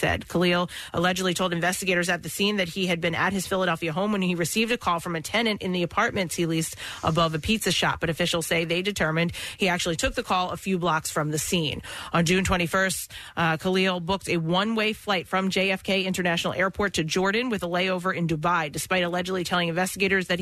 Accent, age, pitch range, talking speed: American, 30-49, 165-190 Hz, 220 wpm